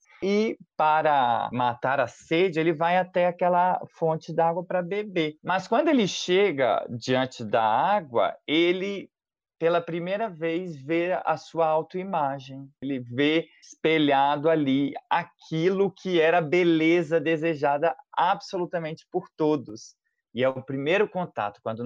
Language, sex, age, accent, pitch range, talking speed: Portuguese, male, 20-39, Brazilian, 125-180 Hz, 125 wpm